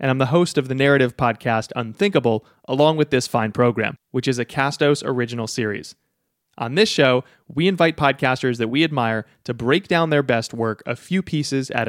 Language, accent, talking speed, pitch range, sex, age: English, American, 195 wpm, 125-155 Hz, male, 30-49